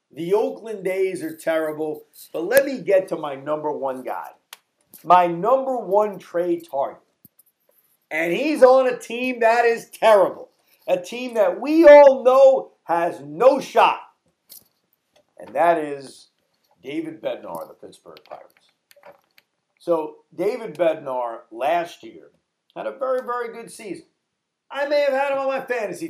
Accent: American